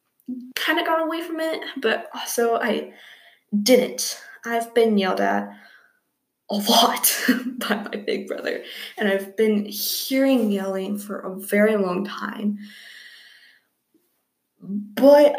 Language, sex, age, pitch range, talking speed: English, female, 20-39, 205-290 Hz, 120 wpm